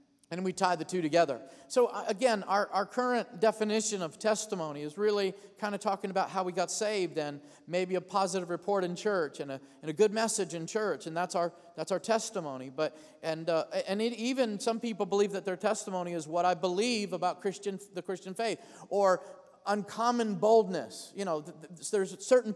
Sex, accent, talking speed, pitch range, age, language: male, American, 200 wpm, 180-235 Hz, 40-59, English